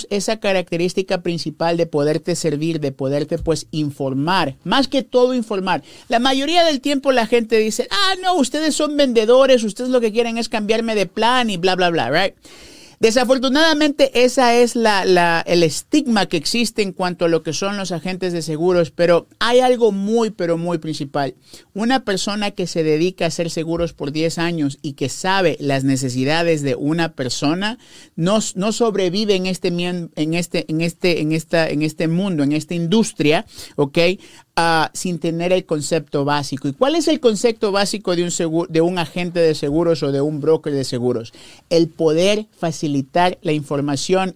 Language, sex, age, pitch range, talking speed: Spanish, male, 50-69, 160-225 Hz, 165 wpm